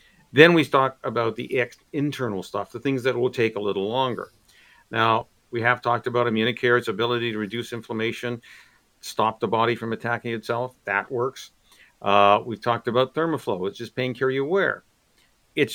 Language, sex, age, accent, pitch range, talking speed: English, male, 50-69, American, 115-150 Hz, 175 wpm